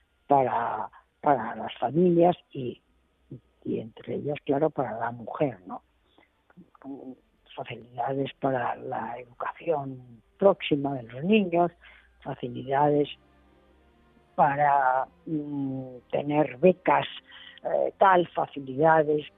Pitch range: 140-185 Hz